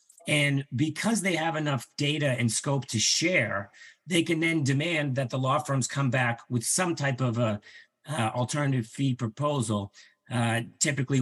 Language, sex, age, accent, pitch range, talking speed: English, male, 50-69, American, 115-140 Hz, 160 wpm